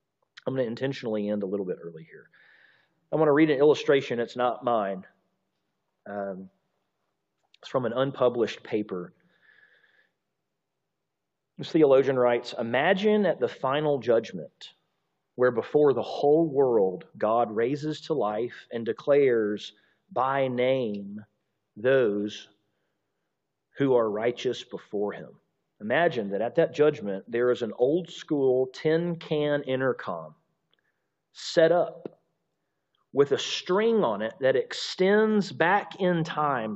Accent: American